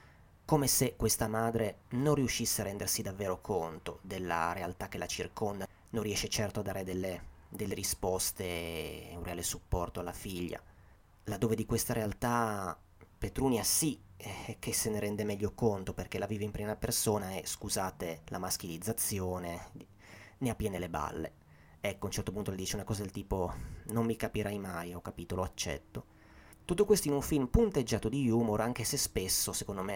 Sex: male